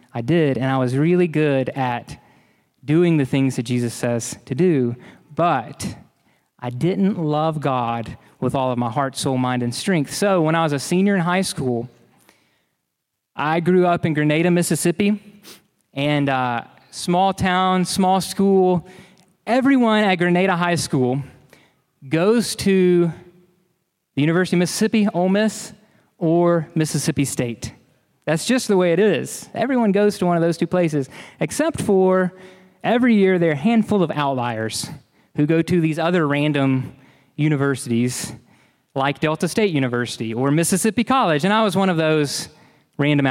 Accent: American